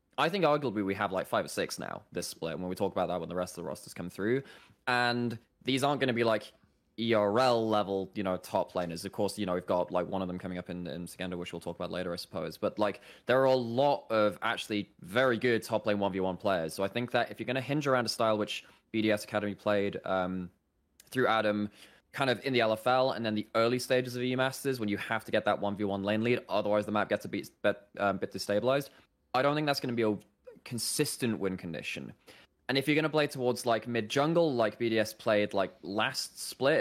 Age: 20-39